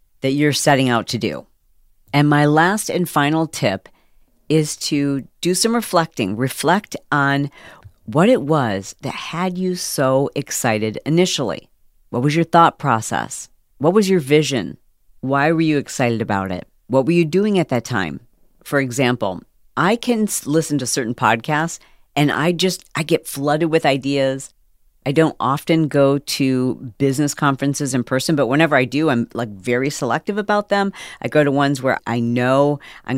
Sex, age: female, 40-59